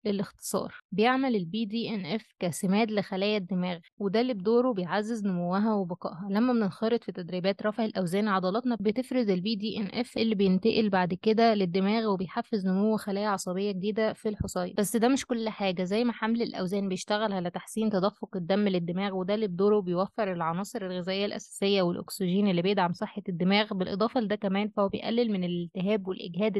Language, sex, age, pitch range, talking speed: Arabic, female, 20-39, 195-225 Hz, 165 wpm